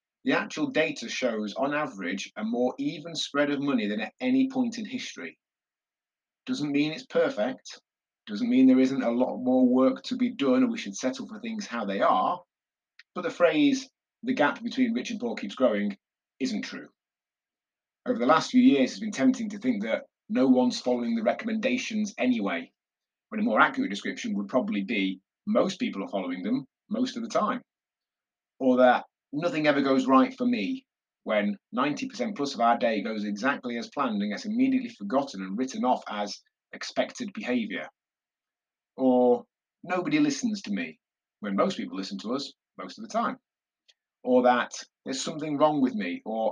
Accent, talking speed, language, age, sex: British, 180 wpm, English, 30-49, male